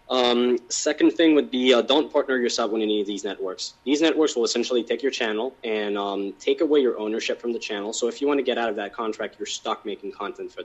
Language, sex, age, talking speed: English, male, 20-39, 255 wpm